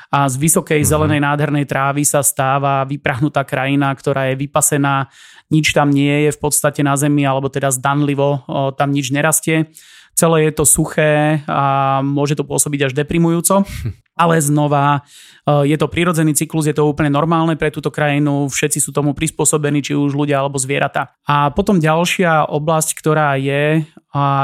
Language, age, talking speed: Slovak, 30-49, 165 wpm